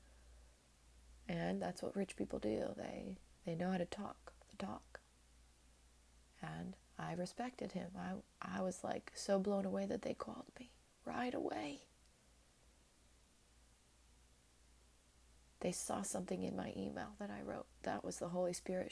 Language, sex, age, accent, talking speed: English, female, 30-49, American, 145 wpm